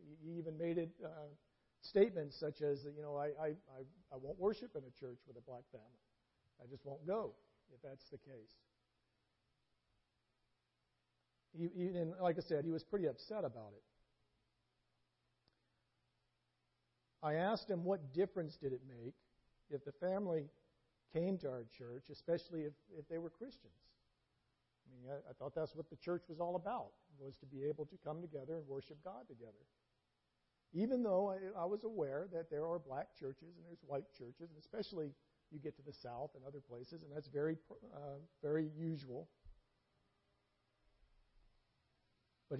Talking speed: 165 wpm